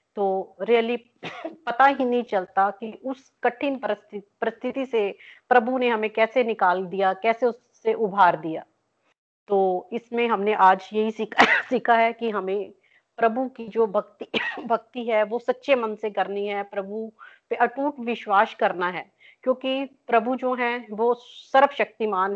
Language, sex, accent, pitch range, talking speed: Hindi, female, native, 200-240 Hz, 150 wpm